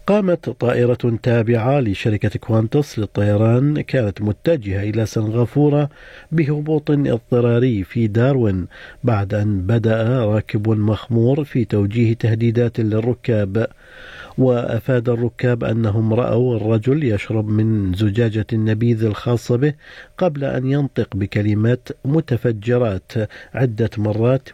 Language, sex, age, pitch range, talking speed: Arabic, male, 50-69, 110-130 Hz, 100 wpm